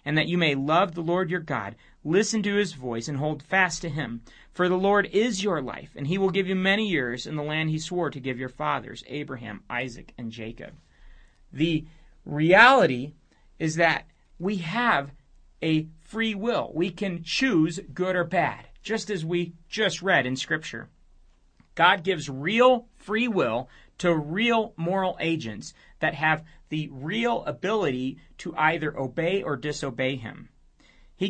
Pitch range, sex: 145-190 Hz, male